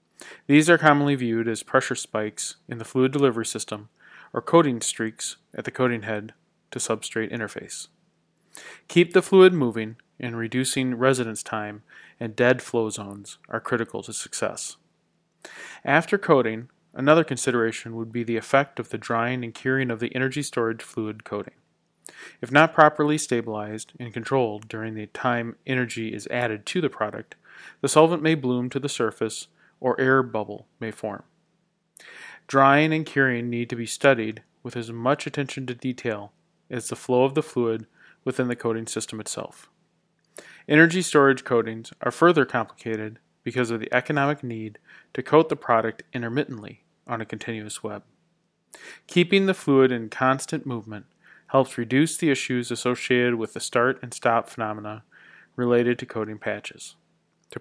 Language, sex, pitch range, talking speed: English, male, 110-135 Hz, 155 wpm